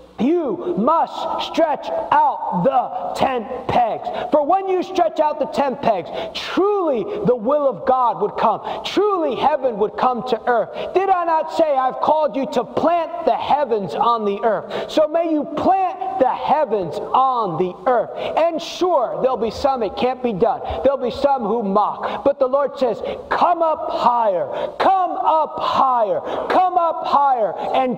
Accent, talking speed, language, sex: American, 170 wpm, English, male